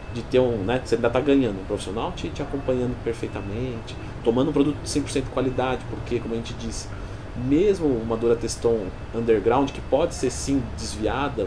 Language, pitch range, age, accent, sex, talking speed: Portuguese, 115-150 Hz, 40-59, Brazilian, male, 165 wpm